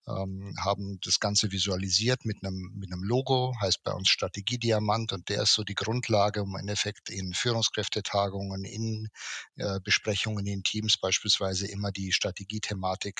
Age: 50-69